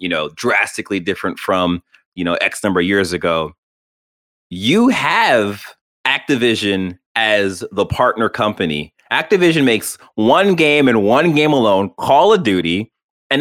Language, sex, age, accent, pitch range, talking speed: English, male, 30-49, American, 95-160 Hz, 140 wpm